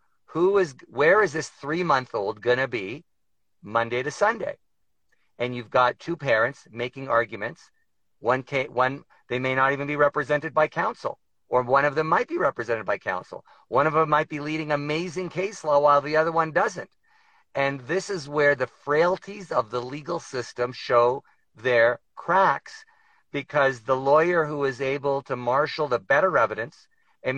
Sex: male